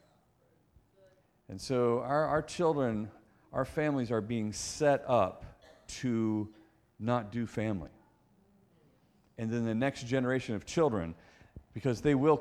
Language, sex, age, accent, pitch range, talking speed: English, male, 40-59, American, 105-140 Hz, 120 wpm